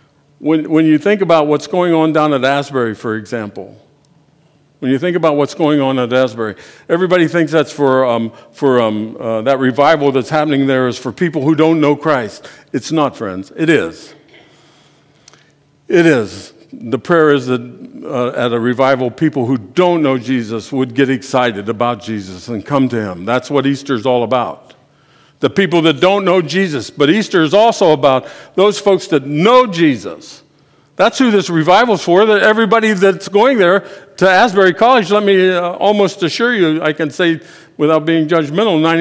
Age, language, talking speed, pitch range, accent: 60-79, English, 180 wpm, 135-180 Hz, American